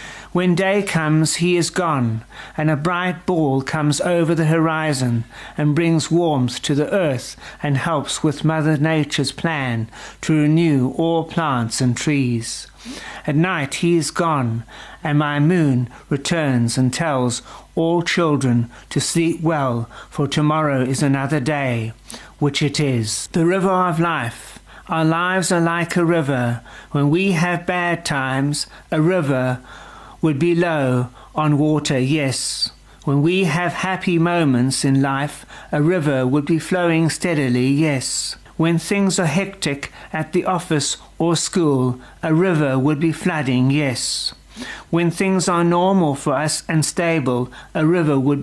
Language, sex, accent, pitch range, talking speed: English, male, British, 135-170 Hz, 145 wpm